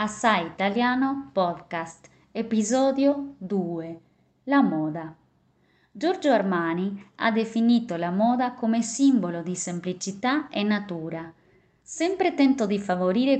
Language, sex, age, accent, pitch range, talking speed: Italian, female, 20-39, native, 170-240 Hz, 105 wpm